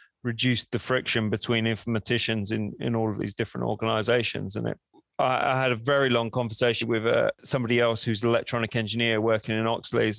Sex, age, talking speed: male, 30-49, 185 wpm